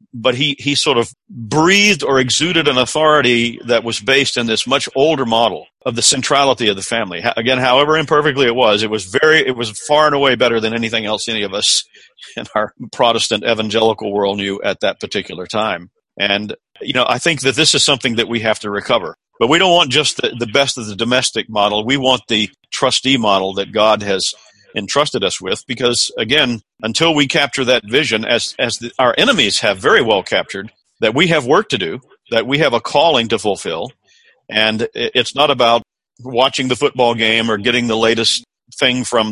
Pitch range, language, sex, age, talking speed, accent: 110-130 Hz, English, male, 50-69, 205 wpm, American